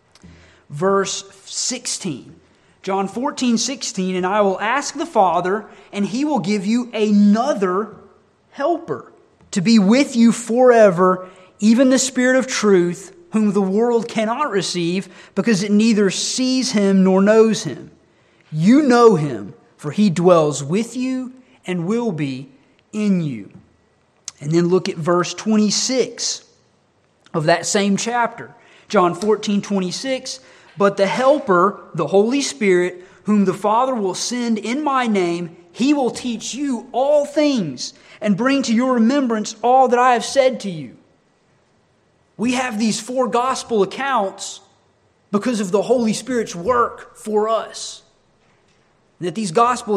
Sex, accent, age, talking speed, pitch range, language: male, American, 30-49, 135 wpm, 185-240 Hz, English